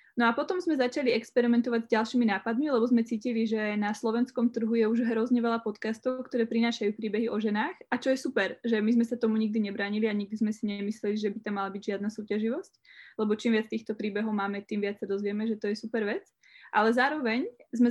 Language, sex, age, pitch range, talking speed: Slovak, female, 20-39, 215-235 Hz, 225 wpm